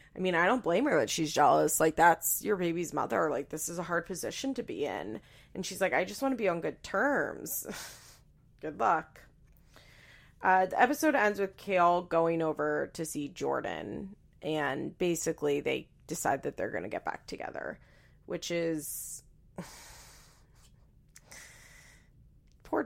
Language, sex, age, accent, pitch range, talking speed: English, female, 30-49, American, 155-200 Hz, 165 wpm